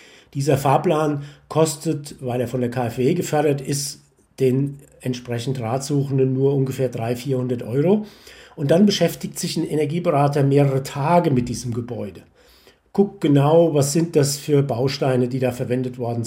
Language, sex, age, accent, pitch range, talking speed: German, male, 50-69, German, 130-170 Hz, 150 wpm